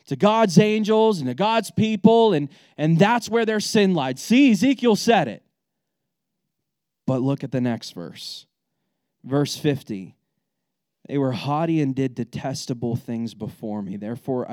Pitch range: 115-140 Hz